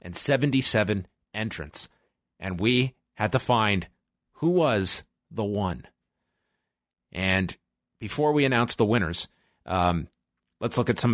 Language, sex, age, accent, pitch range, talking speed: English, male, 30-49, American, 100-140 Hz, 125 wpm